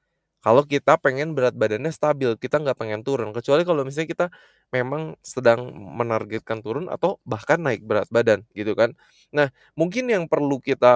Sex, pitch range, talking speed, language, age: male, 125-165 Hz, 165 wpm, Indonesian, 20-39